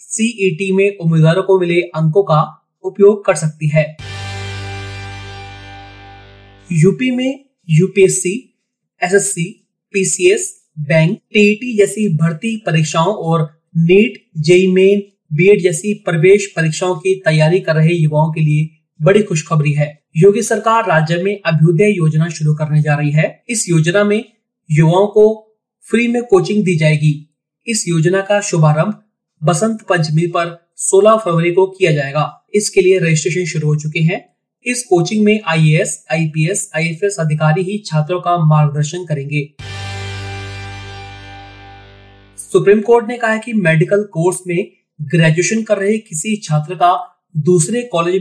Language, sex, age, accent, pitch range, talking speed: Hindi, male, 30-49, native, 155-200 Hz, 135 wpm